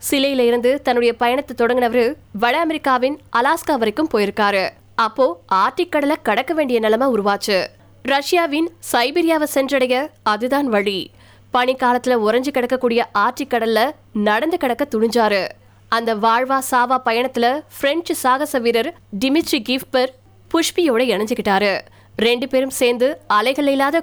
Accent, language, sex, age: native, Tamil, female, 20-39